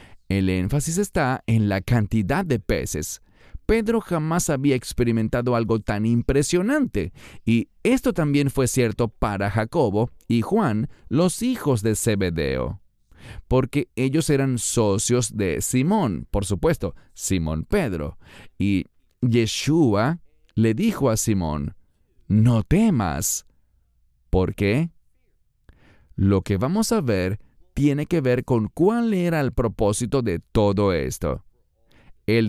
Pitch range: 100-140 Hz